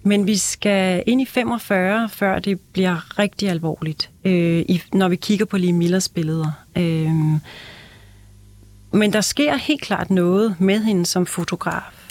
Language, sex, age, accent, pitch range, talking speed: Danish, female, 40-59, native, 180-220 Hz, 140 wpm